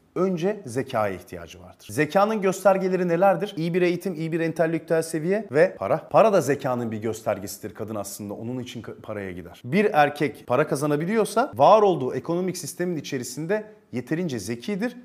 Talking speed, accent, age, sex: 150 wpm, native, 40-59, male